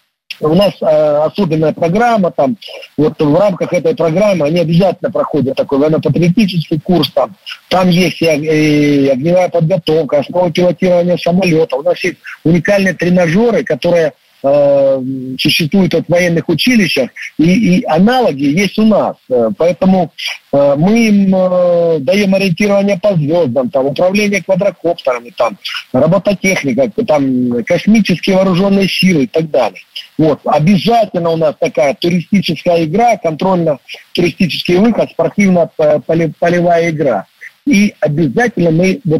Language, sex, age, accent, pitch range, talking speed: Russian, male, 50-69, native, 160-200 Hz, 120 wpm